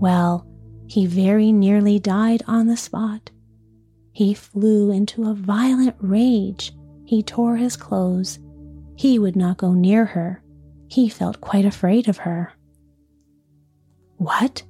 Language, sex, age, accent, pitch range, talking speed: English, female, 30-49, American, 175-220 Hz, 125 wpm